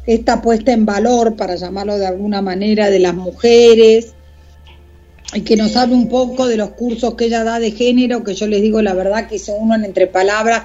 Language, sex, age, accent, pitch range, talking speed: Spanish, female, 40-59, Spanish, 195-245 Hz, 215 wpm